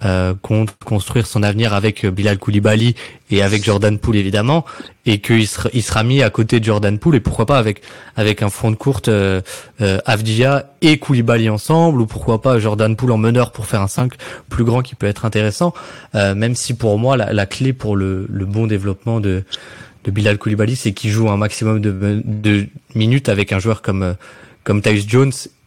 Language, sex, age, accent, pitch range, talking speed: French, male, 20-39, French, 105-125 Hz, 205 wpm